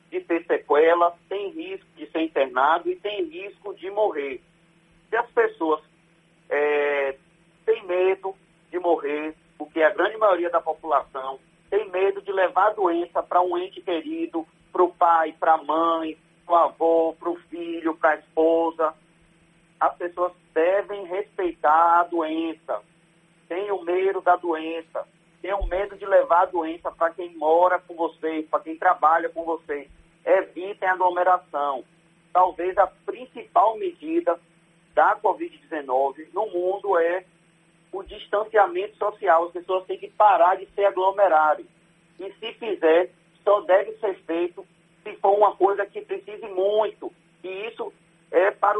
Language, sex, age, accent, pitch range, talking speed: Portuguese, male, 40-59, Brazilian, 165-195 Hz, 150 wpm